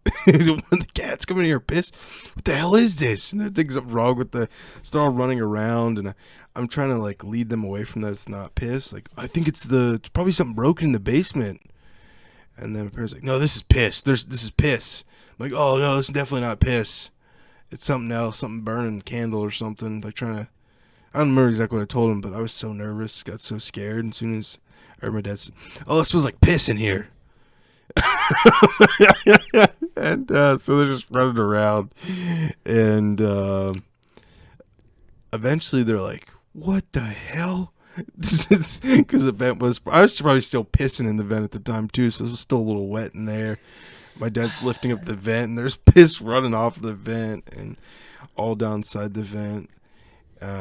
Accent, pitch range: American, 110-145 Hz